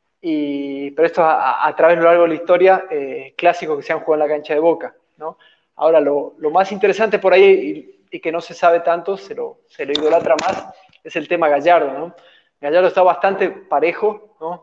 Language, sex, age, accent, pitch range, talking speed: Spanish, male, 20-39, Argentinian, 155-190 Hz, 225 wpm